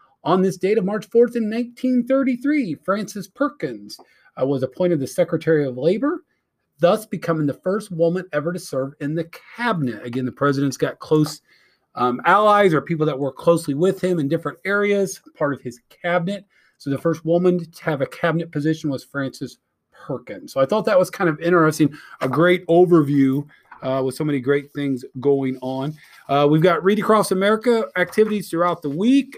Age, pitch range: 40-59, 145-200 Hz